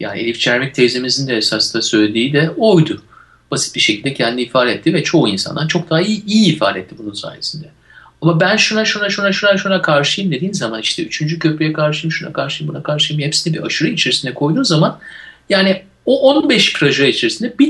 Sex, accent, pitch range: male, native, 150-200 Hz